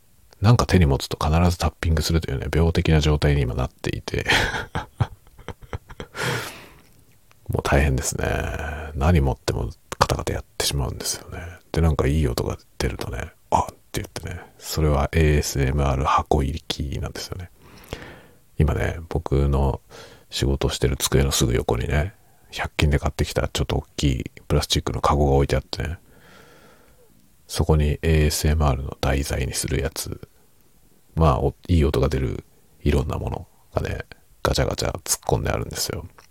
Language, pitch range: Japanese, 70-95 Hz